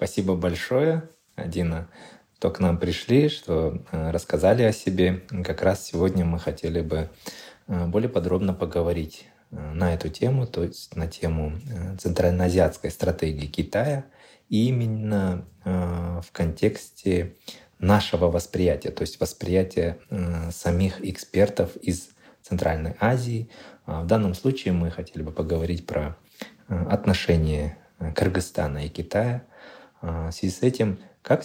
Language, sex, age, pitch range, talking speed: Russian, male, 20-39, 85-105 Hz, 115 wpm